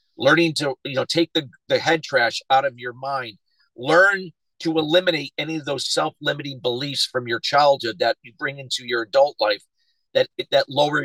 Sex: male